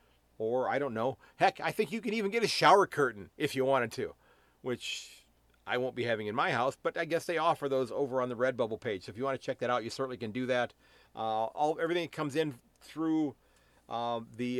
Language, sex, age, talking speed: English, male, 40-59, 245 wpm